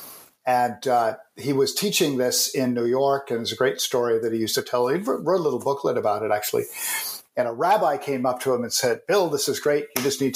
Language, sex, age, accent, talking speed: English, male, 50-69, American, 250 wpm